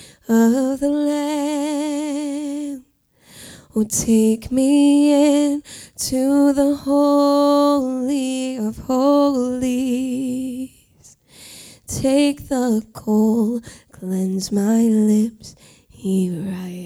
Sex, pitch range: female, 245-290 Hz